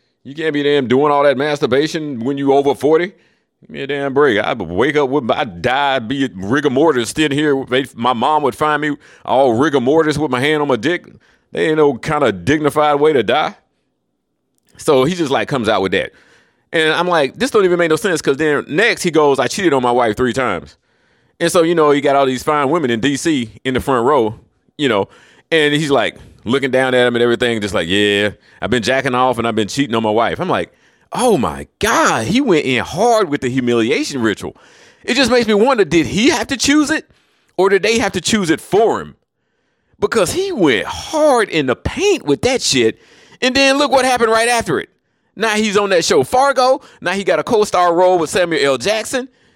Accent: American